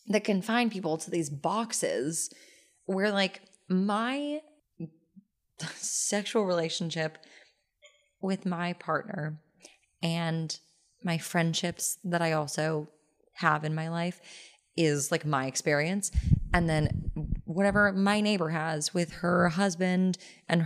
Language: English